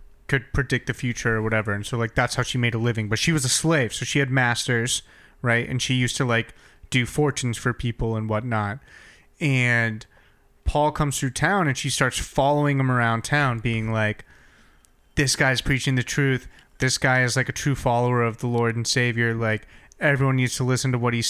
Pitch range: 115-145 Hz